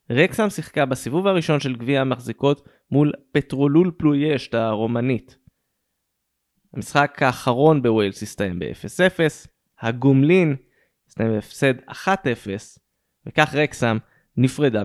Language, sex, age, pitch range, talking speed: Hebrew, male, 20-39, 120-160 Hz, 95 wpm